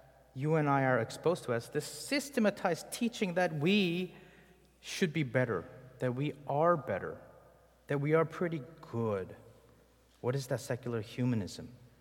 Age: 30-49